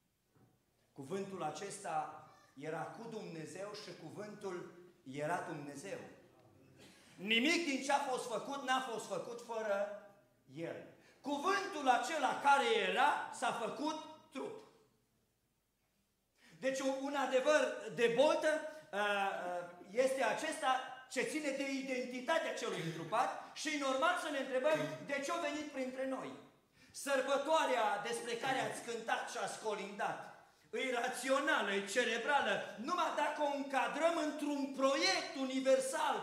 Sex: male